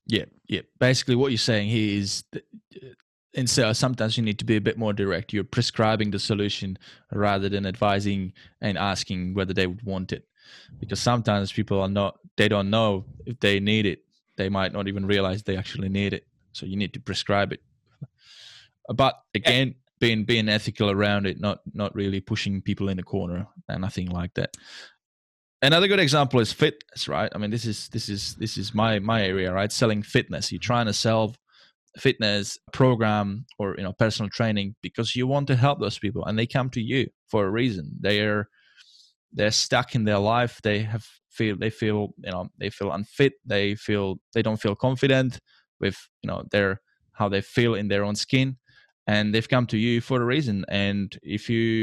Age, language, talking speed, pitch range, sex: 20-39, English, 195 wpm, 100-120 Hz, male